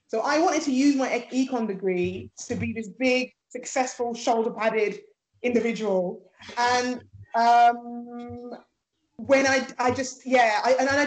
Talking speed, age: 140 wpm, 20-39